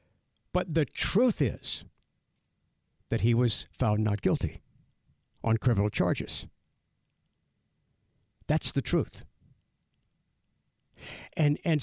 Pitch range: 110-150 Hz